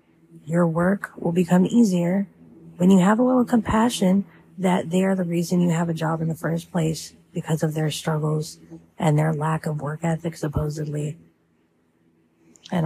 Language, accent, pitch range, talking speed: English, American, 145-170 Hz, 170 wpm